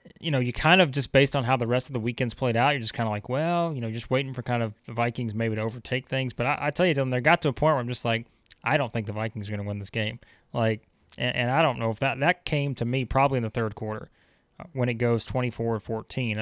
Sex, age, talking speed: male, 20-39, 300 wpm